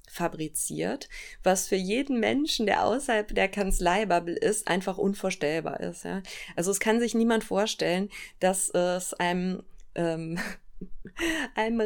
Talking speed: 115 wpm